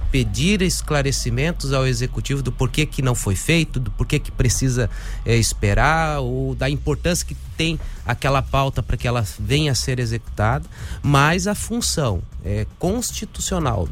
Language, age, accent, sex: English, 30-49, Brazilian, male